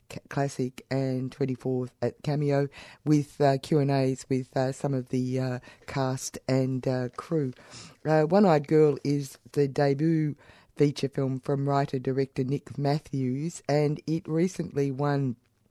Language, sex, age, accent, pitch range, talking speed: English, female, 50-69, Australian, 130-150 Hz, 150 wpm